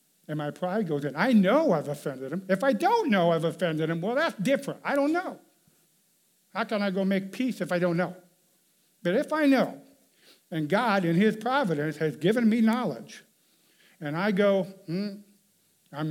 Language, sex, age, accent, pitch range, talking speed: English, male, 50-69, American, 150-195 Hz, 190 wpm